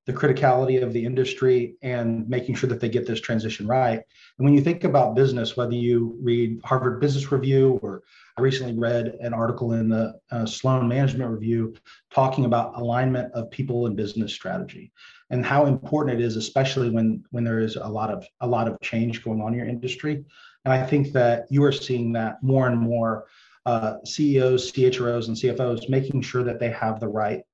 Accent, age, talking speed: American, 40-59, 200 wpm